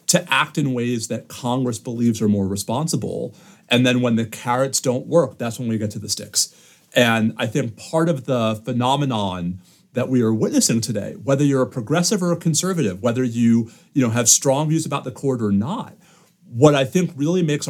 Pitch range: 115-155 Hz